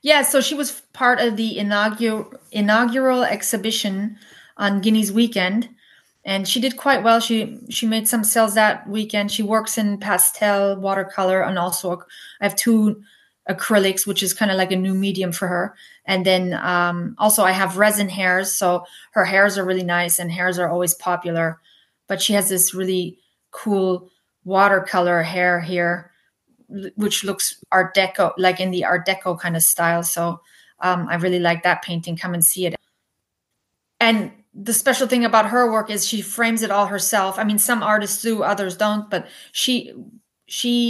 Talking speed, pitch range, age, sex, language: 175 wpm, 185-220 Hz, 30-49, female, English